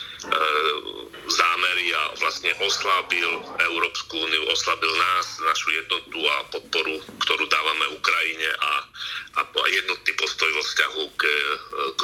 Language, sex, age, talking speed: Slovak, male, 40-59, 115 wpm